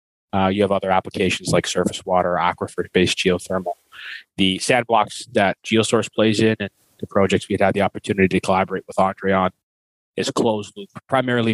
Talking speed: 165 wpm